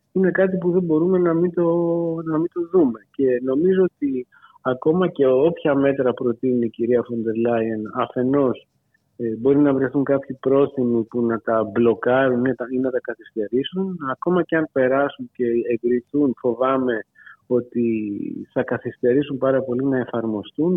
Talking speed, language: 155 wpm, Greek